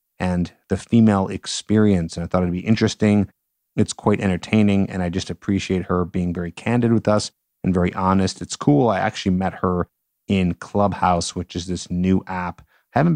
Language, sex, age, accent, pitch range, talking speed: English, male, 30-49, American, 90-105 Hz, 185 wpm